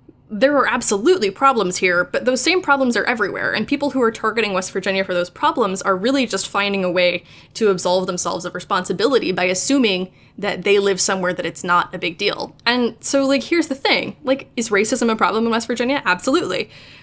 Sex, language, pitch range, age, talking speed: female, English, 185-245 Hz, 10-29, 210 wpm